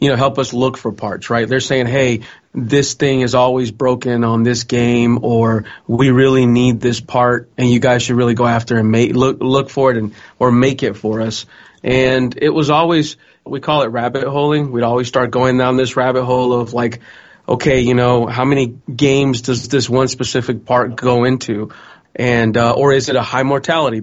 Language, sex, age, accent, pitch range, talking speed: English, male, 30-49, American, 120-135 Hz, 205 wpm